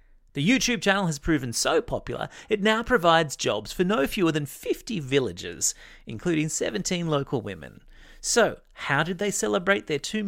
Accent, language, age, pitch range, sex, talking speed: Australian, English, 30-49, 125-195 Hz, male, 165 wpm